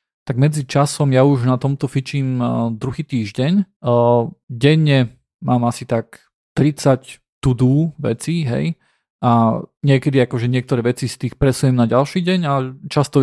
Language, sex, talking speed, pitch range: Slovak, male, 140 wpm, 125-140 Hz